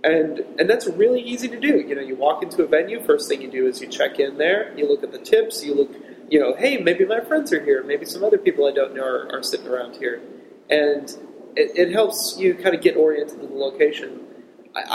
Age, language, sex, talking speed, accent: 30-49, English, male, 255 wpm, American